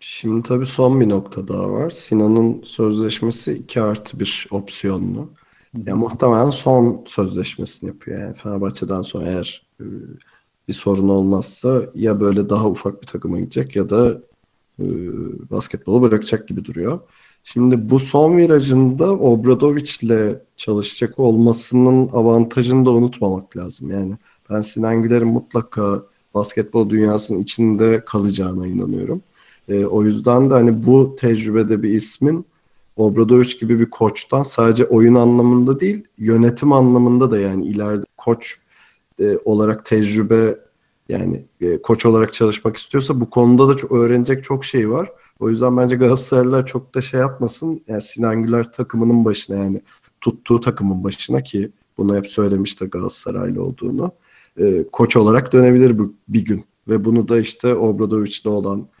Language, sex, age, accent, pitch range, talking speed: Turkish, male, 40-59, native, 105-125 Hz, 135 wpm